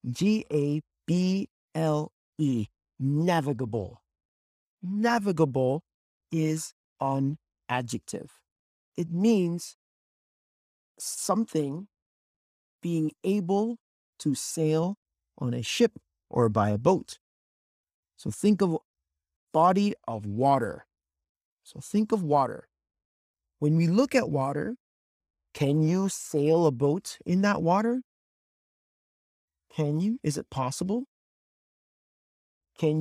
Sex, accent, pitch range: male, American, 115-180 Hz